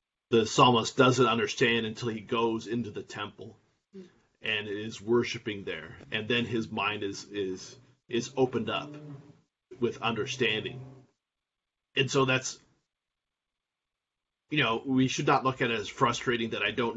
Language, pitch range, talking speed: English, 110-130 Hz, 145 wpm